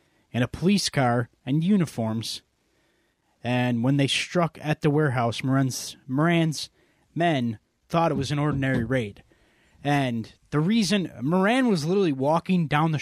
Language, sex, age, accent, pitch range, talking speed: English, male, 20-39, American, 120-155 Hz, 145 wpm